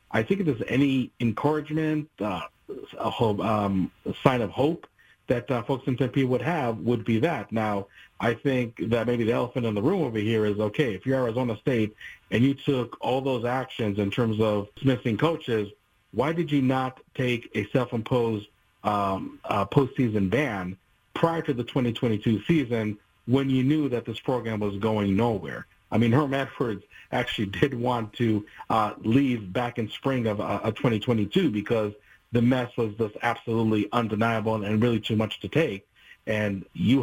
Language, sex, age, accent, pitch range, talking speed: English, male, 40-59, American, 105-130 Hz, 175 wpm